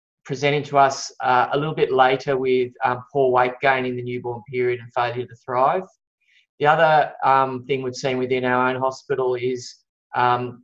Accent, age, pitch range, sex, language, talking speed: Australian, 20-39, 125-135 Hz, male, English, 185 wpm